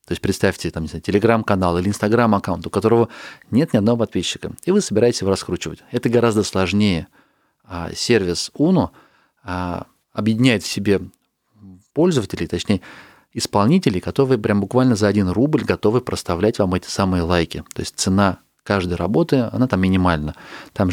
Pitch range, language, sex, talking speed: 90-115 Hz, Russian, male, 140 wpm